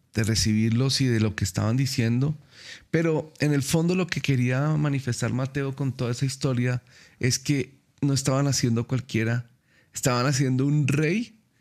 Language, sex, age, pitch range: Spanish, male, 40-59, 115-140 Hz